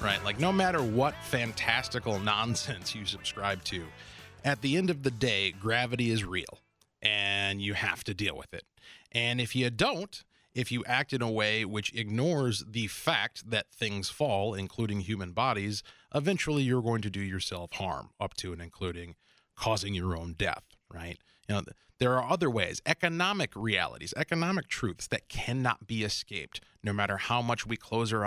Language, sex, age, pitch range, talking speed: English, male, 30-49, 100-120 Hz, 175 wpm